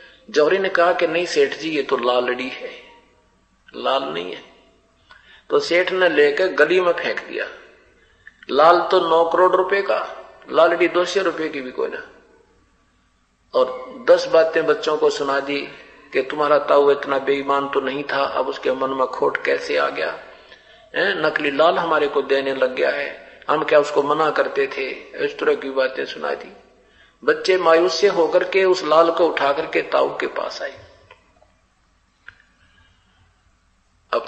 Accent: native